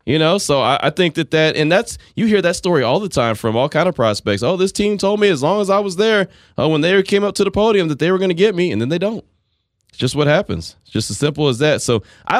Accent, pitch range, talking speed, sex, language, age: American, 100-145 Hz, 310 wpm, male, English, 20-39